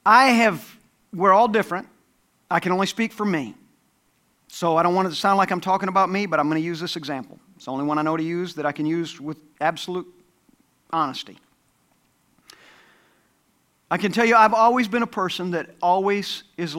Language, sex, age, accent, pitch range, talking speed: English, male, 40-59, American, 165-235 Hz, 205 wpm